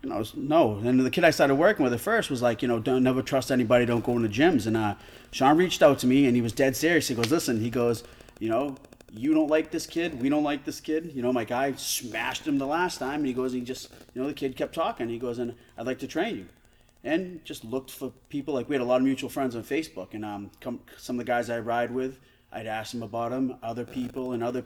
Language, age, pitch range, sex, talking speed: English, 30-49, 115-140 Hz, male, 285 wpm